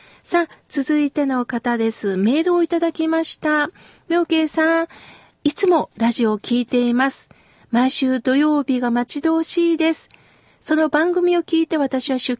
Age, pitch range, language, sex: 40-59, 235-320 Hz, Japanese, female